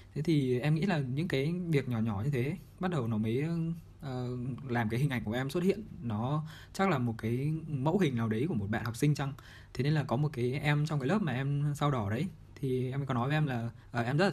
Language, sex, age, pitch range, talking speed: Vietnamese, male, 20-39, 115-150 Hz, 280 wpm